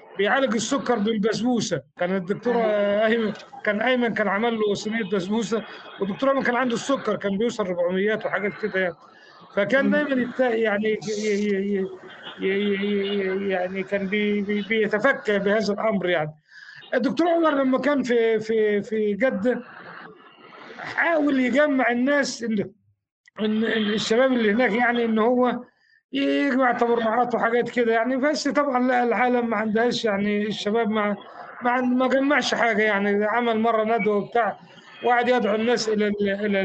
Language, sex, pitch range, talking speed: Arabic, male, 205-245 Hz, 130 wpm